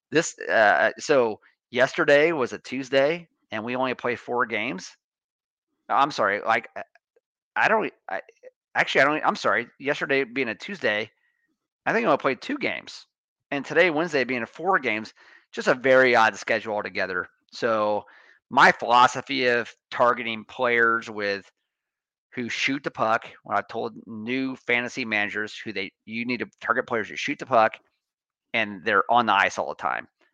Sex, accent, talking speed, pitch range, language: male, American, 165 wpm, 110-135 Hz, English